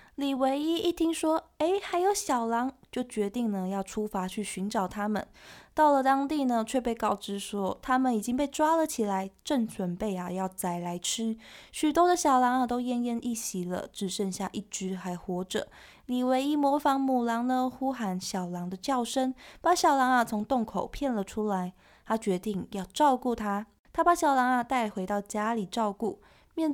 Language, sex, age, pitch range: Chinese, female, 20-39, 195-265 Hz